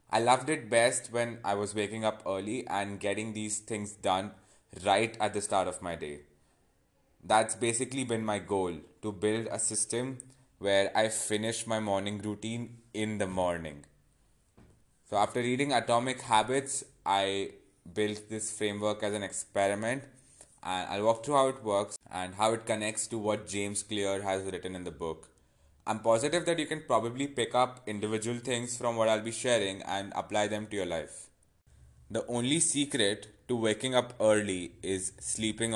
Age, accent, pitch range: 20-39, Indian, 95-120 Hz